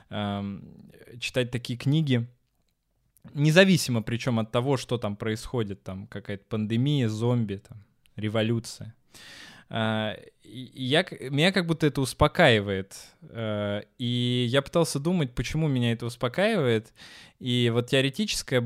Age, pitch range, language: 20-39, 110-140 Hz, Russian